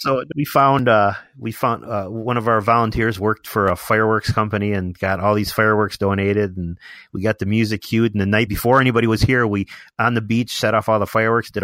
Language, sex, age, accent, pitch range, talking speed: English, male, 30-49, American, 100-115 Hz, 230 wpm